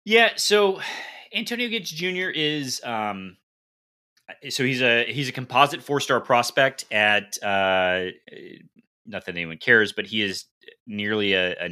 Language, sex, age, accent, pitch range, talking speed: English, male, 30-49, American, 90-120 Hz, 140 wpm